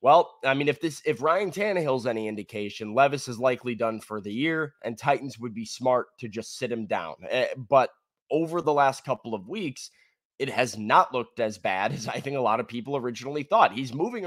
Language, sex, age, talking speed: English, male, 20-39, 215 wpm